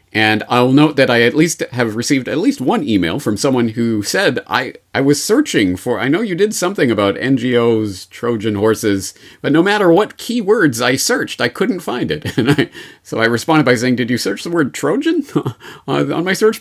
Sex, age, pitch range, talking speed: male, 40-59, 110-165 Hz, 210 wpm